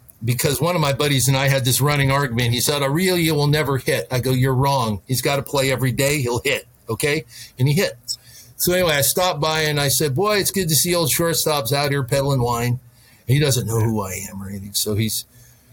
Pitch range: 120-155 Hz